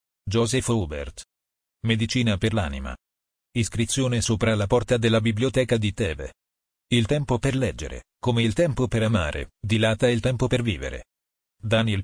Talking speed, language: 140 wpm, Italian